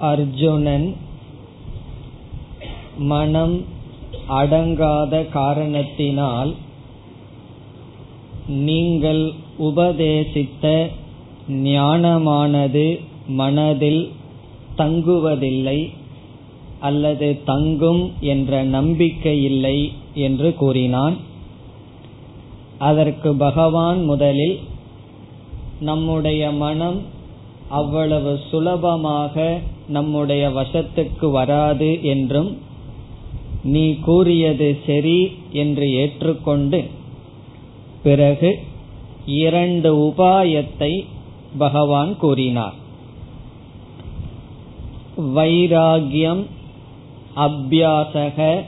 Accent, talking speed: native, 45 wpm